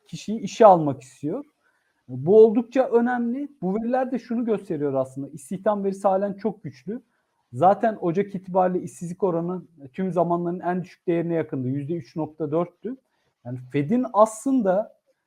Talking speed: 130 wpm